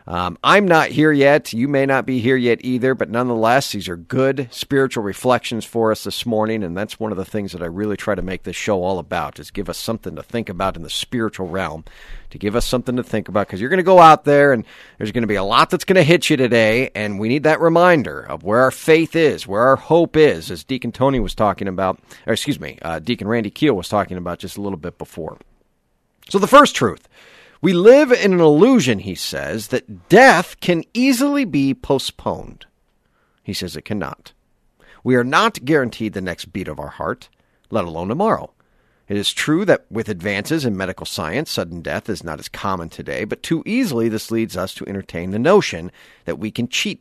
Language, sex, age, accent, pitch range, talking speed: English, male, 40-59, American, 95-140 Hz, 225 wpm